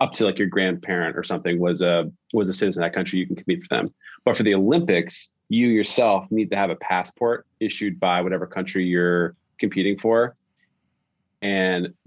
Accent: American